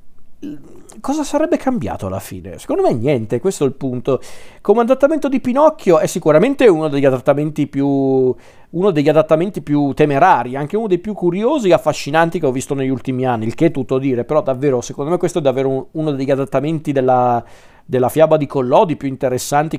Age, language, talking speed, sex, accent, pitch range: 40-59, Italian, 190 wpm, male, native, 130-145 Hz